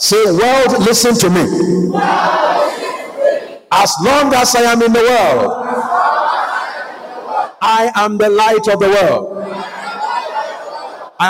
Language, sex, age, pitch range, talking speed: English, male, 50-69, 175-245 Hz, 110 wpm